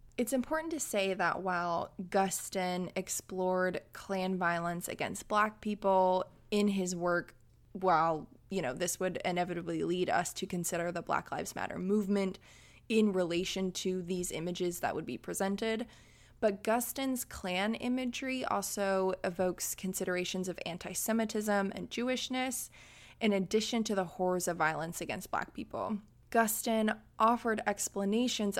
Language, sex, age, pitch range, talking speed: English, female, 20-39, 175-210 Hz, 135 wpm